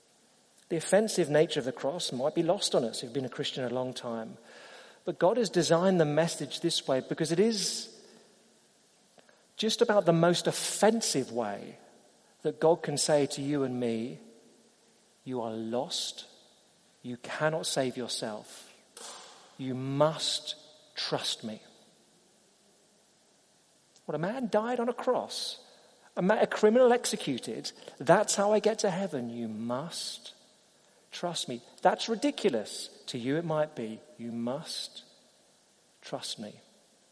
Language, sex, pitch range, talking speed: English, male, 135-200 Hz, 145 wpm